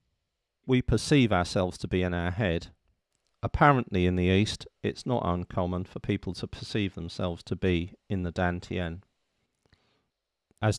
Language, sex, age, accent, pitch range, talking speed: English, male, 50-69, British, 85-105 Hz, 145 wpm